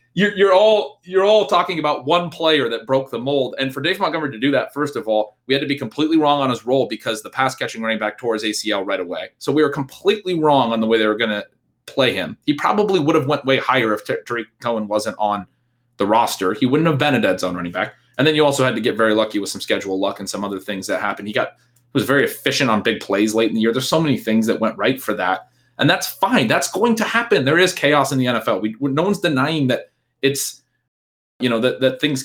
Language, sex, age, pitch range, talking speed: English, male, 30-49, 120-150 Hz, 265 wpm